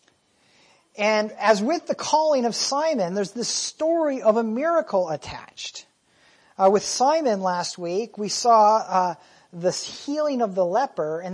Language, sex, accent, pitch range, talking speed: English, male, American, 170-225 Hz, 150 wpm